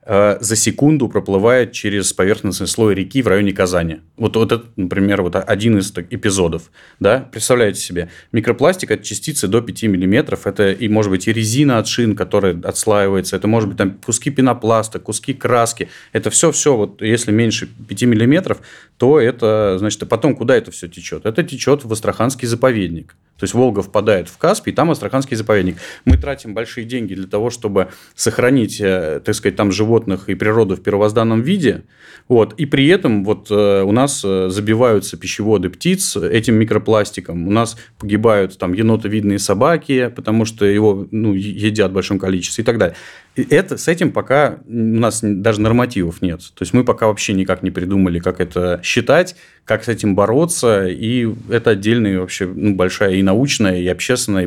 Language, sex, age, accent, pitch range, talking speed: Russian, male, 30-49, native, 95-115 Hz, 165 wpm